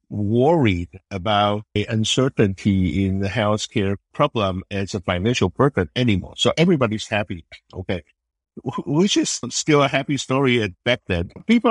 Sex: male